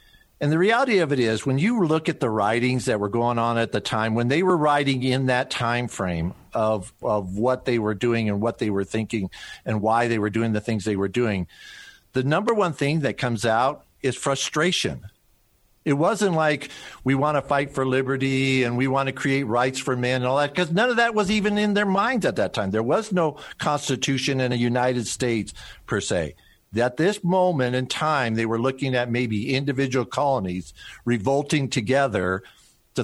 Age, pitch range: 50-69, 110-145 Hz